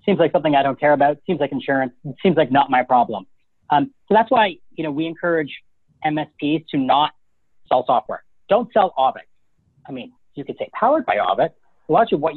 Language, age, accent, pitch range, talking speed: English, 40-59, American, 145-185 Hz, 205 wpm